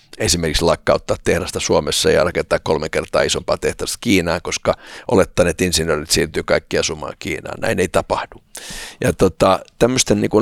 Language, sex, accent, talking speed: Finnish, male, native, 145 wpm